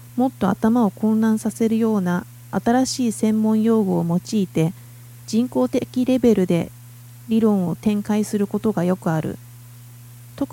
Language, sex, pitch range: Japanese, female, 150-225 Hz